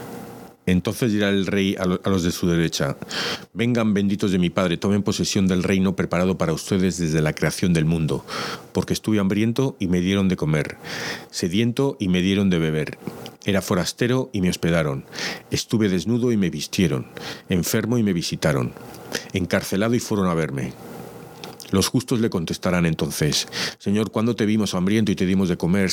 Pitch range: 90-105 Hz